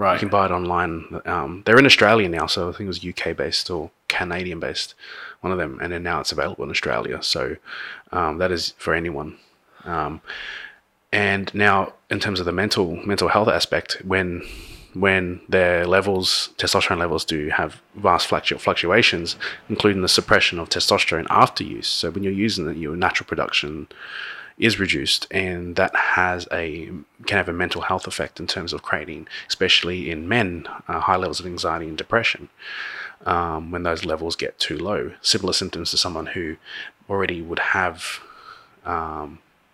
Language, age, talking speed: English, 20-39, 170 wpm